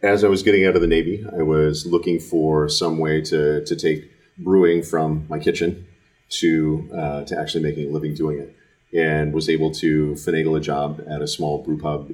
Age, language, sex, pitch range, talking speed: 40-59, English, male, 75-80 Hz, 210 wpm